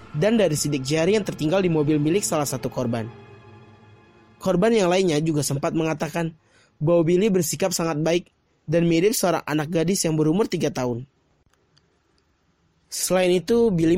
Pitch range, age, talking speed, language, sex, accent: 130-170 Hz, 20-39, 150 wpm, Indonesian, male, native